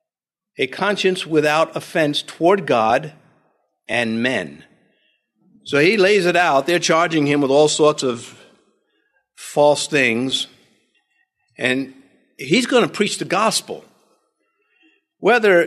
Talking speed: 115 wpm